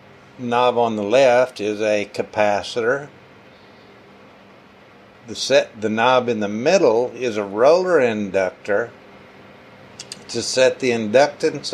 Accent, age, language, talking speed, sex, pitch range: American, 60-79, English, 110 wpm, male, 105-140 Hz